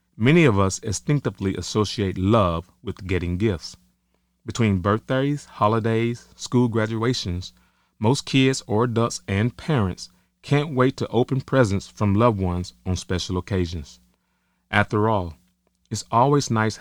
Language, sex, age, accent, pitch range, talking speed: English, male, 30-49, American, 90-115 Hz, 130 wpm